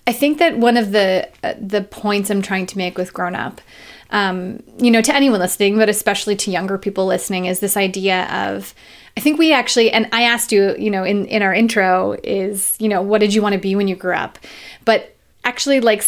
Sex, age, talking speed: female, 30-49, 230 wpm